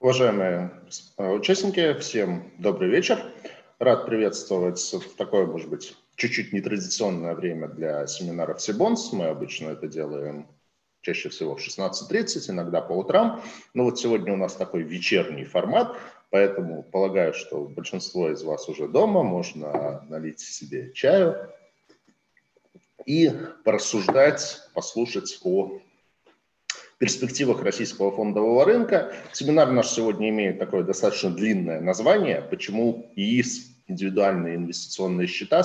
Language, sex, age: Russian, male, 50-69